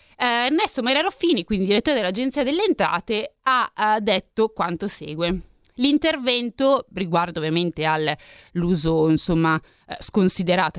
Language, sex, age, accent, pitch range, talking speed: Italian, female, 20-39, native, 180-265 Hz, 100 wpm